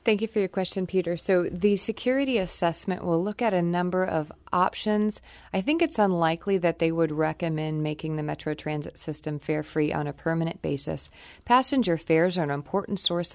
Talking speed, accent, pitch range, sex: 190 wpm, American, 155-190 Hz, female